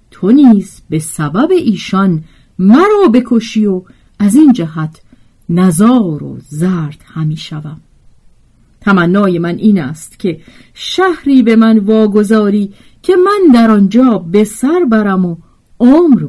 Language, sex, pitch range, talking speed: Persian, female, 170-260 Hz, 120 wpm